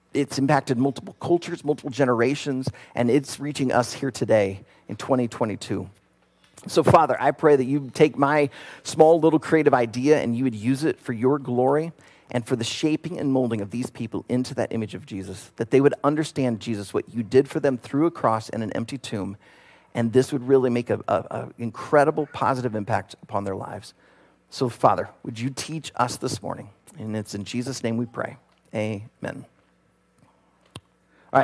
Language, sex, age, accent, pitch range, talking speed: English, male, 40-59, American, 115-155 Hz, 180 wpm